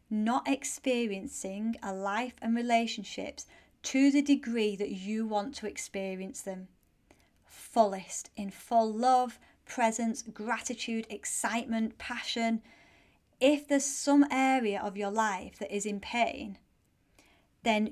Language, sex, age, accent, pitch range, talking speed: English, female, 30-49, British, 195-230 Hz, 115 wpm